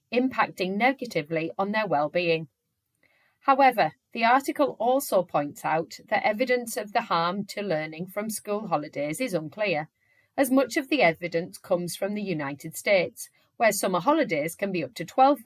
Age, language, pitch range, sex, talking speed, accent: 30-49, English, 170-250 Hz, female, 160 wpm, British